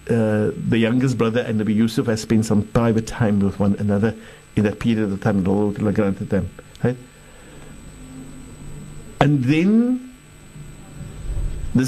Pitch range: 125-160 Hz